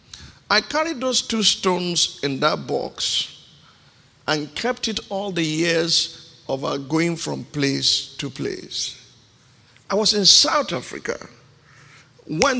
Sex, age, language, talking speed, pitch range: male, 50-69, English, 130 wpm, 135-180 Hz